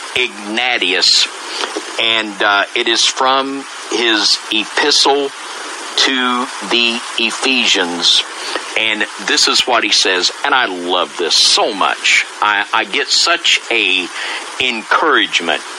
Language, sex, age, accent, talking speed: English, male, 50-69, American, 110 wpm